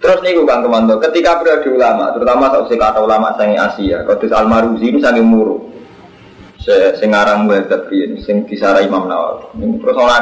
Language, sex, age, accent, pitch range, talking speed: Indonesian, male, 20-39, native, 115-180 Hz, 160 wpm